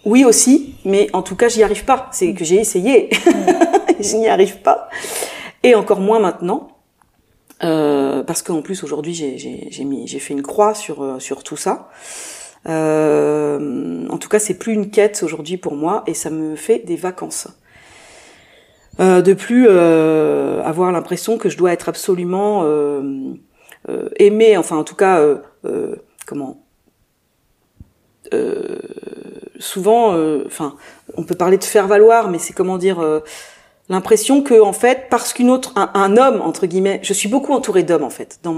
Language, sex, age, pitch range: French, female, 40-59, 150-220 Hz